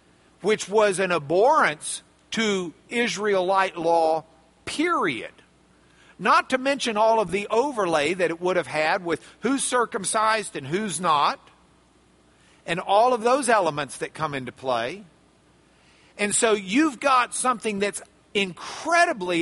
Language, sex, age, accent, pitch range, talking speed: English, male, 50-69, American, 185-280 Hz, 130 wpm